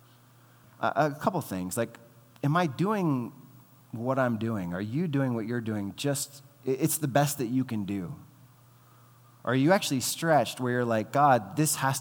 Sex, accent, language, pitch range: male, American, English, 120-145 Hz